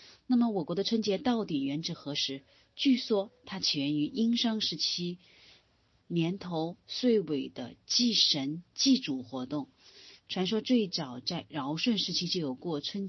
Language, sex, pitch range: Chinese, female, 140-205 Hz